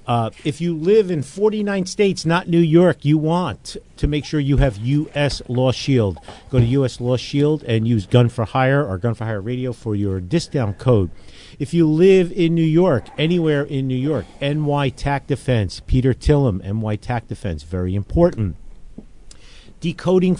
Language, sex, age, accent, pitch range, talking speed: English, male, 50-69, American, 110-150 Hz, 170 wpm